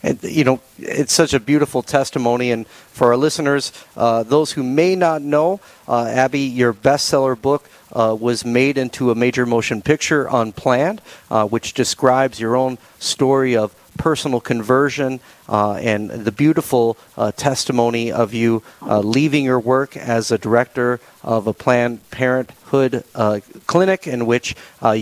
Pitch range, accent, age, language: 115-140 Hz, American, 40-59, English